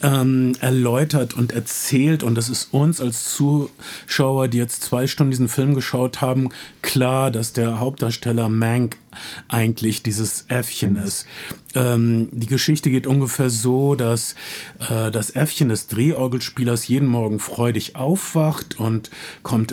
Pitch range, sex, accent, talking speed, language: 115-150 Hz, male, German, 135 wpm, German